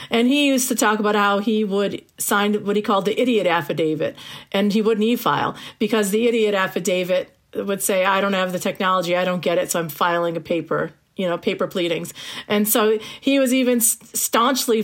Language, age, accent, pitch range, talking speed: English, 40-59, American, 185-225 Hz, 200 wpm